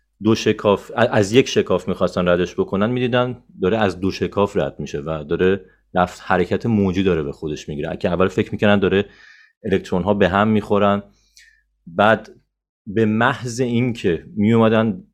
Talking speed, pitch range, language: 150 wpm, 90-115 Hz, Persian